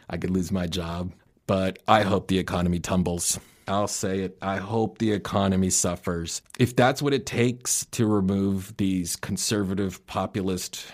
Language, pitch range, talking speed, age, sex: English, 95-115 Hz, 160 wpm, 30-49, male